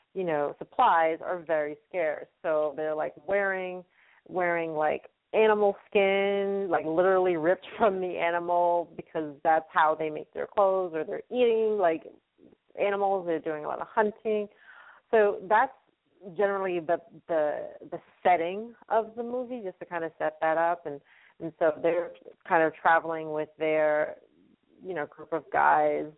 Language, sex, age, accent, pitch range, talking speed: English, female, 30-49, American, 155-195 Hz, 160 wpm